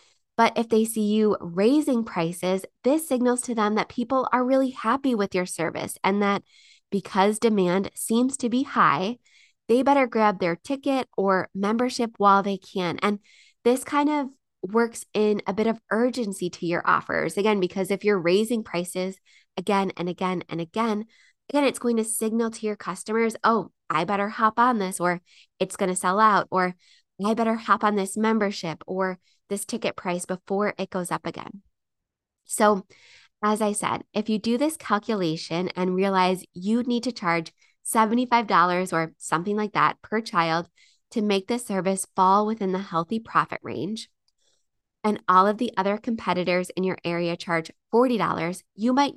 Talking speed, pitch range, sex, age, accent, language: 175 wpm, 185-230 Hz, female, 20-39, American, English